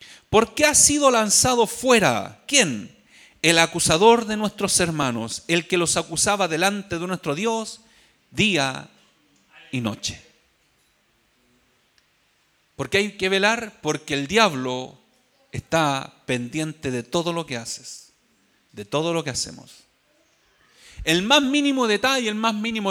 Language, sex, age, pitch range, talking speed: Spanish, male, 40-59, 160-230 Hz, 130 wpm